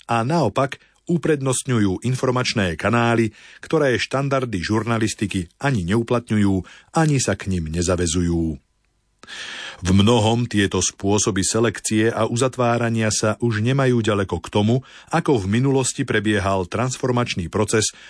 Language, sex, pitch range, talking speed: Slovak, male, 95-125 Hz, 115 wpm